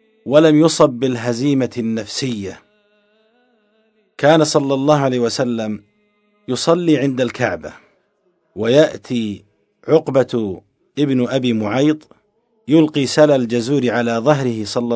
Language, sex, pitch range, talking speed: Arabic, male, 115-155 Hz, 90 wpm